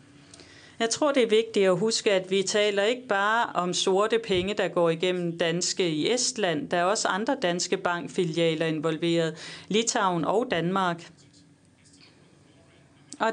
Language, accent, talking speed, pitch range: Danish, native, 145 wpm, 170-230 Hz